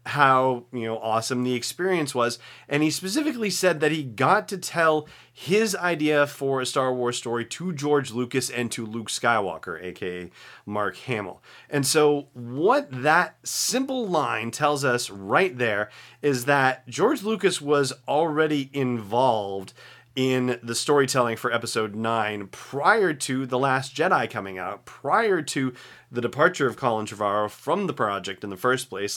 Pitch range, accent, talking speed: 120-150 Hz, American, 160 wpm